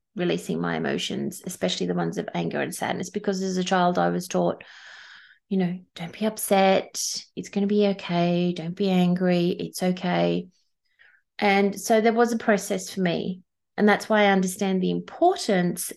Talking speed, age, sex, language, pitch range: 175 wpm, 30-49, female, English, 180-210 Hz